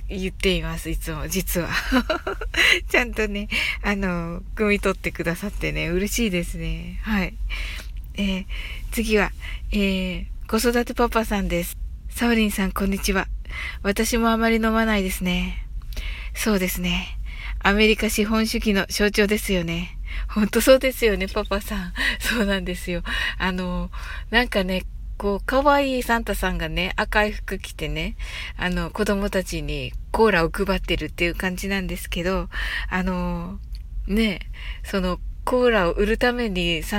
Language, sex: Japanese, female